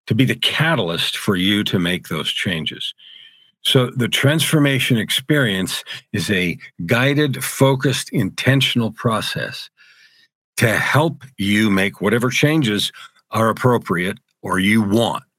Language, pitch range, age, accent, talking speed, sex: English, 105-135 Hz, 50-69, American, 120 wpm, male